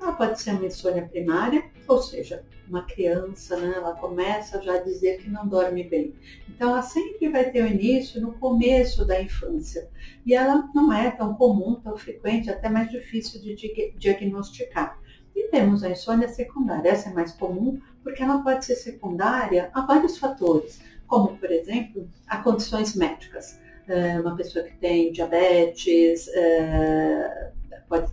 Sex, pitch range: female, 175-245 Hz